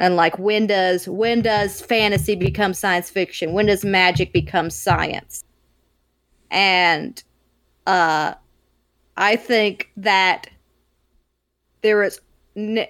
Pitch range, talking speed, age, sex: 180-220 Hz, 105 wpm, 30-49, female